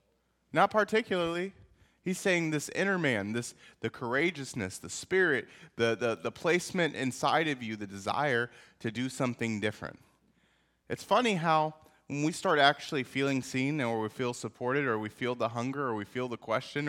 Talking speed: 170 wpm